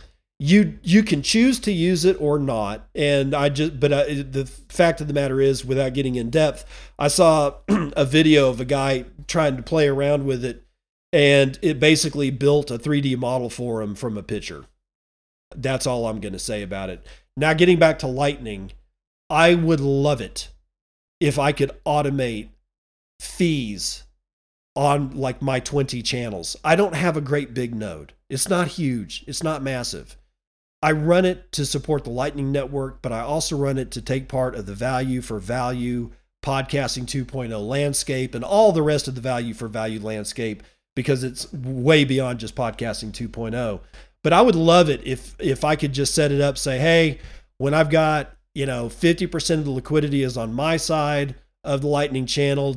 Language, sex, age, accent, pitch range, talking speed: English, male, 40-59, American, 120-150 Hz, 185 wpm